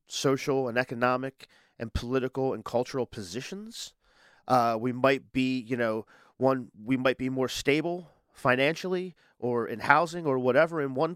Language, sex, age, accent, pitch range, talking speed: English, male, 30-49, American, 125-150 Hz, 150 wpm